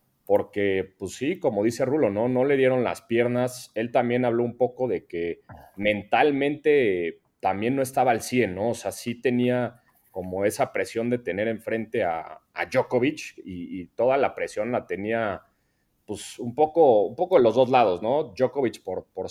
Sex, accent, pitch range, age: male, Mexican, 105-125 Hz, 30-49